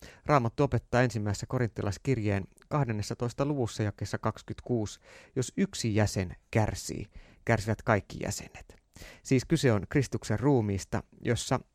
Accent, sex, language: native, male, Finnish